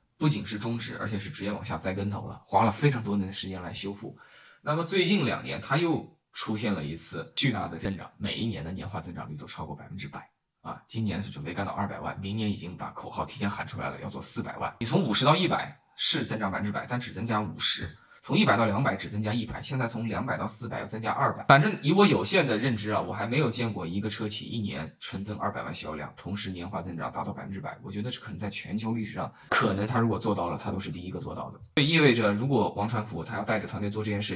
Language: Chinese